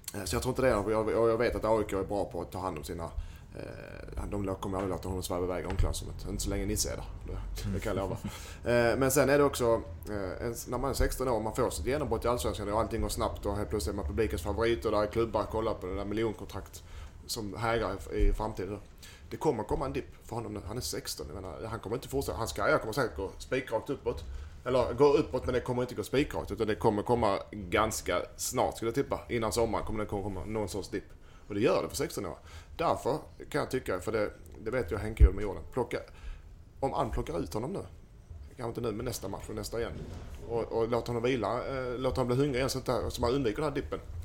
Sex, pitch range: male, 90-120 Hz